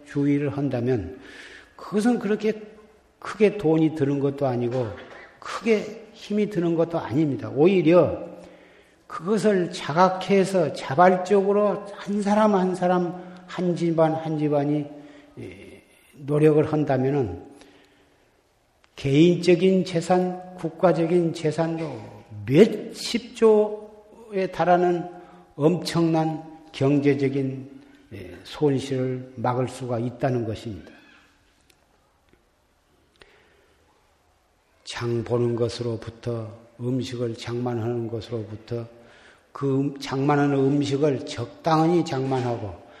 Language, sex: Korean, male